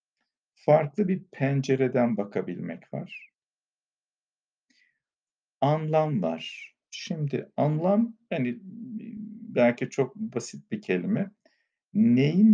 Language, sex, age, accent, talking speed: Turkish, male, 50-69, native, 75 wpm